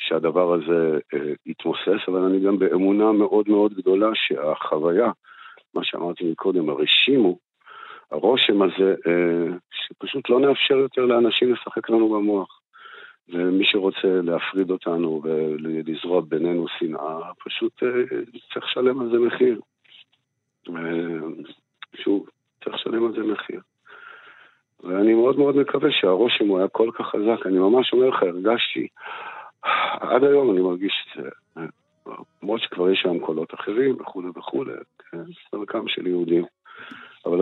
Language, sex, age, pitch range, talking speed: Hebrew, male, 50-69, 90-135 Hz, 130 wpm